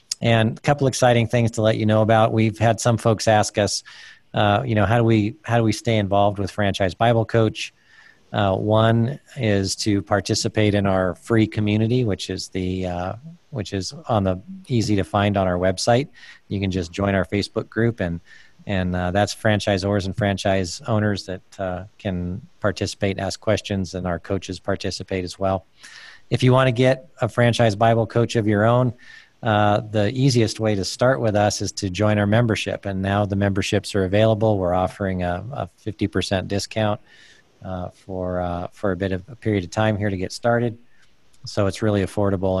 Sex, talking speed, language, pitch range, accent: male, 195 wpm, English, 95-110 Hz, American